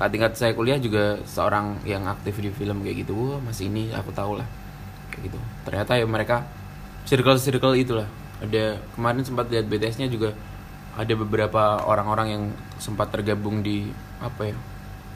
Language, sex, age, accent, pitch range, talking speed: Indonesian, male, 20-39, native, 100-115 Hz, 155 wpm